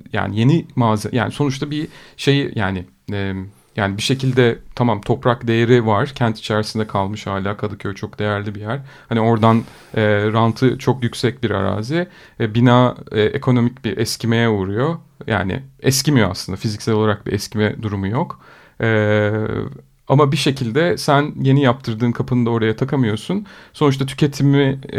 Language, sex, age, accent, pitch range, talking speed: Turkish, male, 40-59, native, 105-130 Hz, 150 wpm